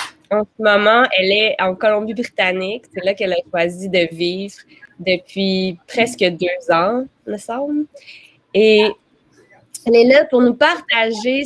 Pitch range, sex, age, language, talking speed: 190-235 Hz, female, 20-39, French, 145 wpm